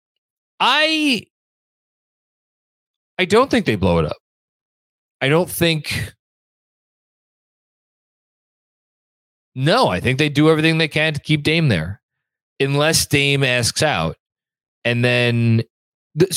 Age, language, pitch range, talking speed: 30-49, English, 105-140 Hz, 110 wpm